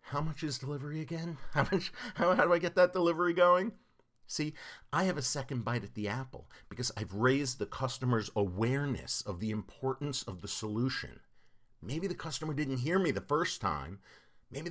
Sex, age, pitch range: male, 50-69, 110-150 Hz